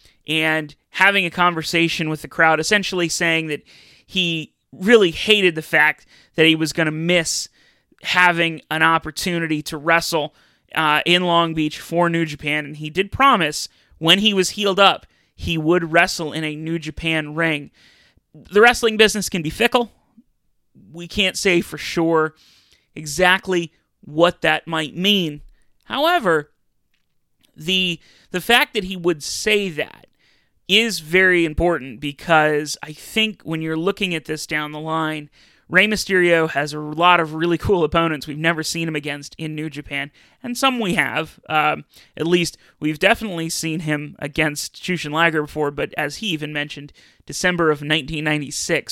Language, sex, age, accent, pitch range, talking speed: English, male, 30-49, American, 150-180 Hz, 160 wpm